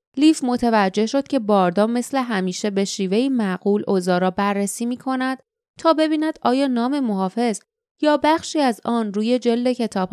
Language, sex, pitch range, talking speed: Persian, female, 210-285 Hz, 155 wpm